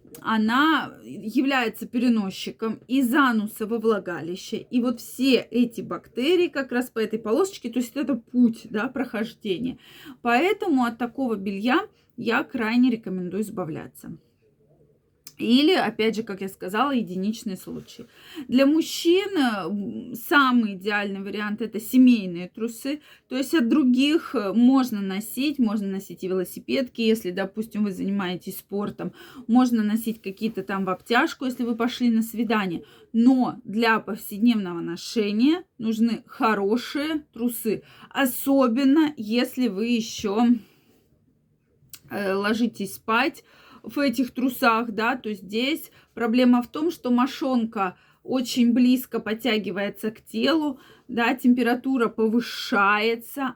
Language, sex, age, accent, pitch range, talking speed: Russian, female, 20-39, native, 215-255 Hz, 120 wpm